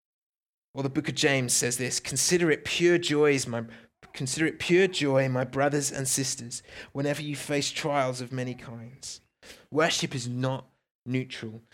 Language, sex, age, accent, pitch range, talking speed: English, male, 30-49, British, 120-150 Hz, 160 wpm